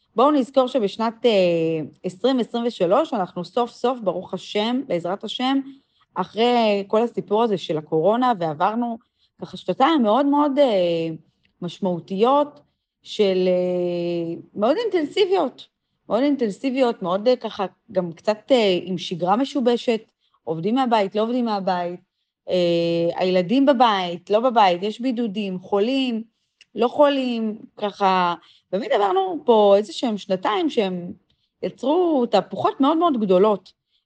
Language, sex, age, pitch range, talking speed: Hebrew, female, 30-49, 180-245 Hz, 120 wpm